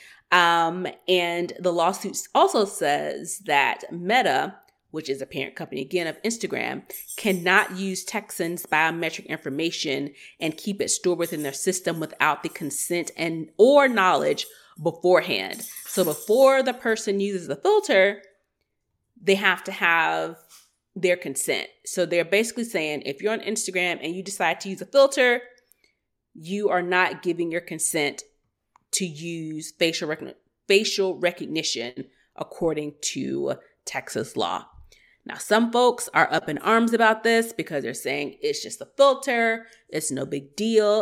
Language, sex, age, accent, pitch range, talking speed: English, female, 30-49, American, 165-220 Hz, 145 wpm